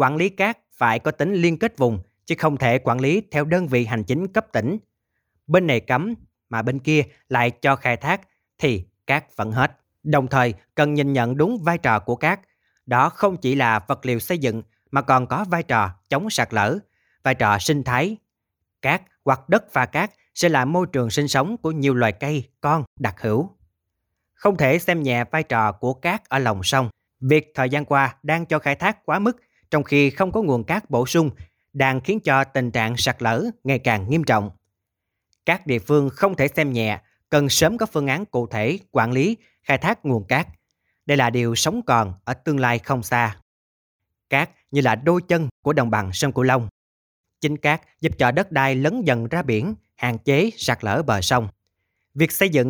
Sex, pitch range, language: male, 115-160 Hz, Vietnamese